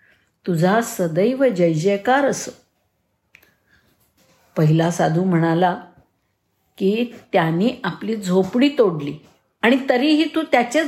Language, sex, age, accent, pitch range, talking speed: Marathi, female, 50-69, native, 170-240 Hz, 95 wpm